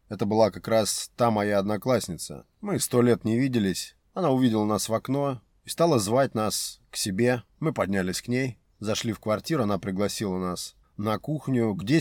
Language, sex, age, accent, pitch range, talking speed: Russian, male, 30-49, native, 95-120 Hz, 180 wpm